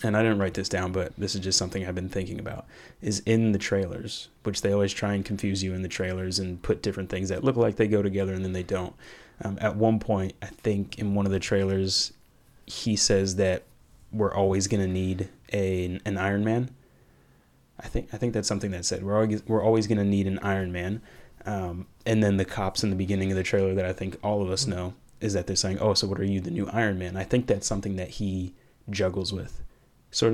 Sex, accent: male, American